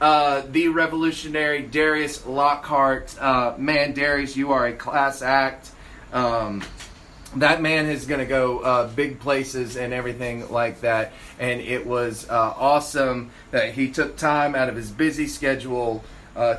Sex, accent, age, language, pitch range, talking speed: male, American, 30-49, English, 130-175 Hz, 150 wpm